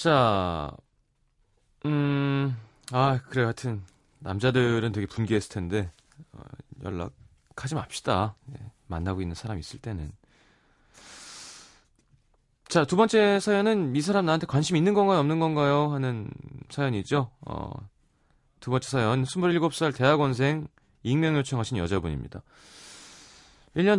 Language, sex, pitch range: Korean, male, 100-150 Hz